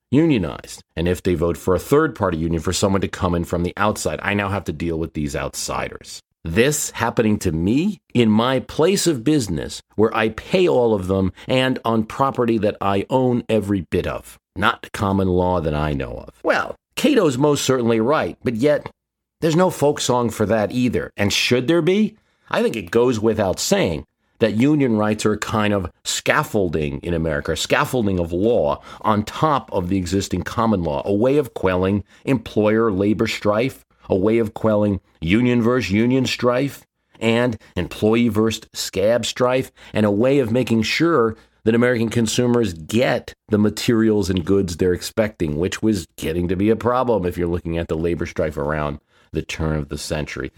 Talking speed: 185 wpm